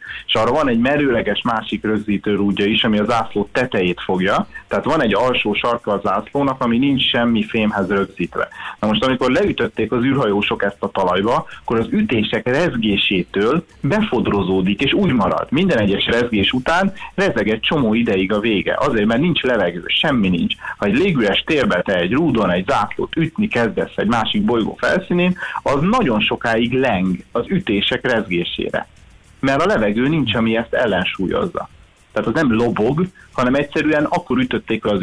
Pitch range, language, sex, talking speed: 105-135 Hz, Hungarian, male, 165 wpm